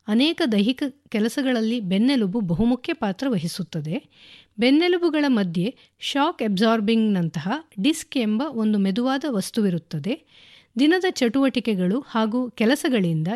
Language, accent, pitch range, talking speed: English, Indian, 200-270 Hz, 100 wpm